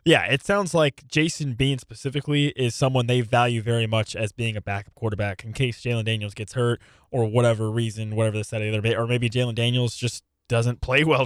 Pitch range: 120-155 Hz